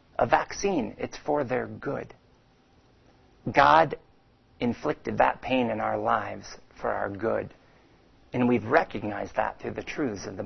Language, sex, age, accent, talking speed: English, male, 50-69, American, 145 wpm